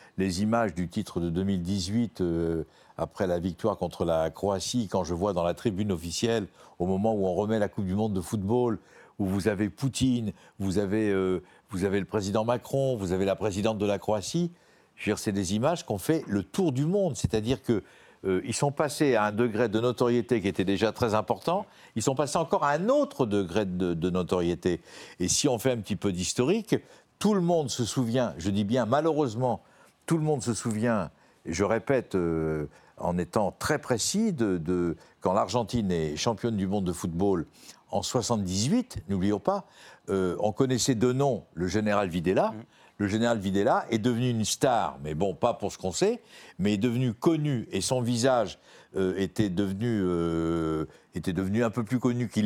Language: French